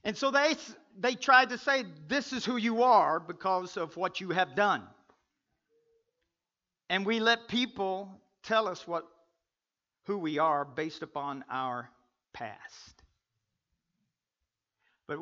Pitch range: 120-185 Hz